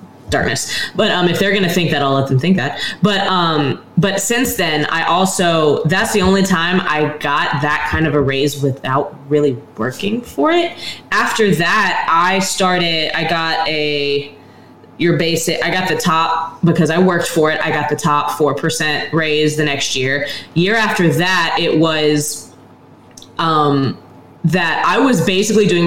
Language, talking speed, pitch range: English, 175 wpm, 150-185 Hz